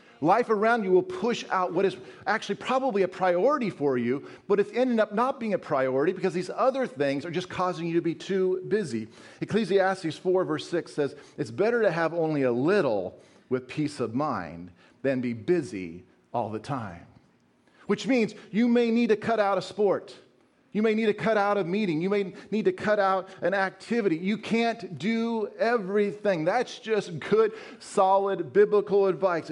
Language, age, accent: English, 40-59, American